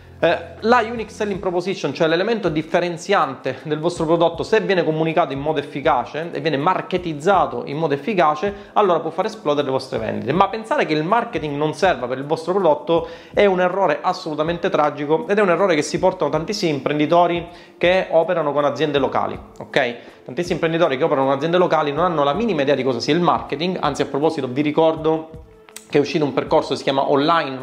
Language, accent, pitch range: Italian, native, 145-175 Hz